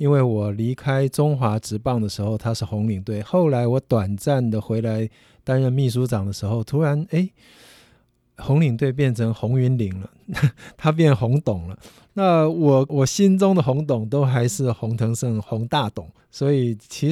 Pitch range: 115-140 Hz